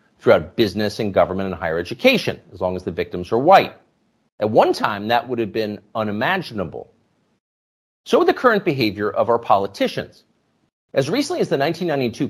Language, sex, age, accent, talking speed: English, male, 40-59, American, 165 wpm